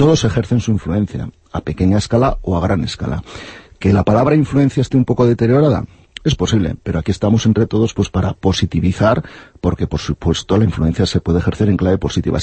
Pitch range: 95-120 Hz